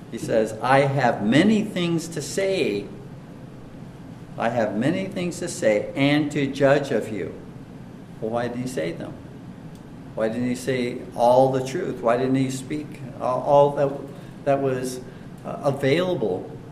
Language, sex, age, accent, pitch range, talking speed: English, male, 50-69, American, 115-145 Hz, 150 wpm